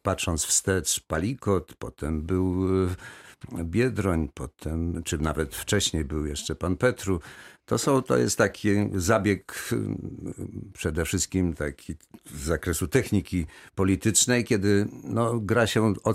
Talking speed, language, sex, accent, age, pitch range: 120 wpm, Polish, male, native, 60-79, 85-100 Hz